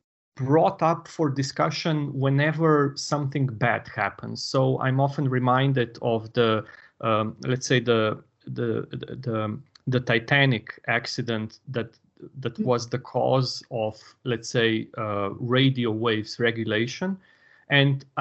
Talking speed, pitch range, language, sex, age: 120 wpm, 115-145 Hz, English, male, 30-49